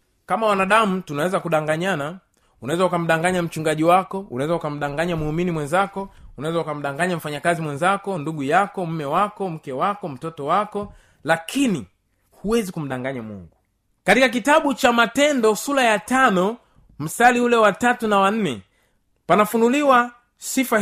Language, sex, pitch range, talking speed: Swahili, male, 160-230 Hz, 125 wpm